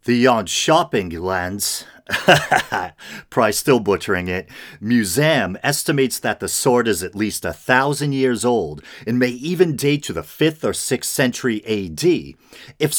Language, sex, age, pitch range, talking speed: English, male, 40-59, 100-150 Hz, 150 wpm